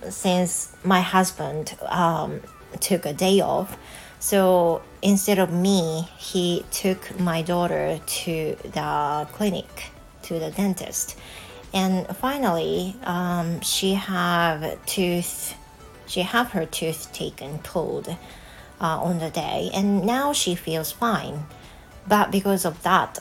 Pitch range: 160-190 Hz